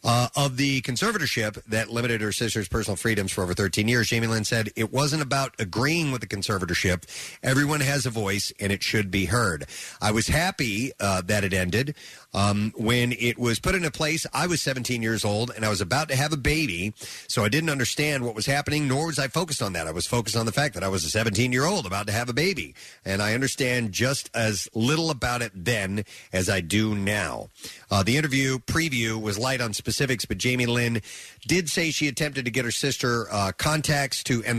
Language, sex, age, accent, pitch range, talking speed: English, male, 40-59, American, 105-140 Hz, 220 wpm